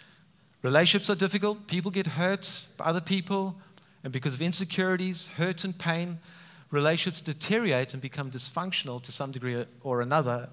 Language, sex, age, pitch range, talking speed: English, male, 50-69, 130-180 Hz, 150 wpm